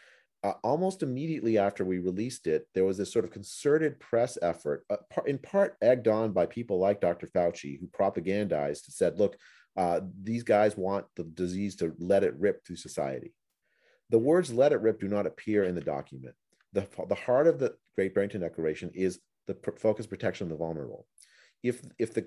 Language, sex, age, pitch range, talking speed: English, male, 40-59, 90-115 Hz, 190 wpm